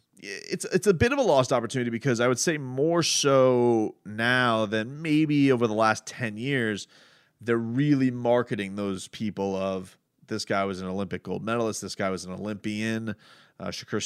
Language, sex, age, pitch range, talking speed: English, male, 30-49, 95-115 Hz, 180 wpm